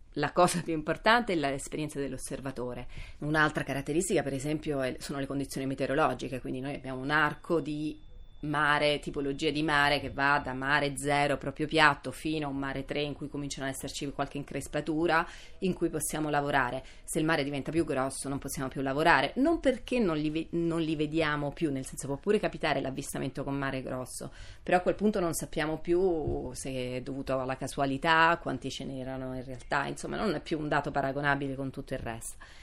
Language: Italian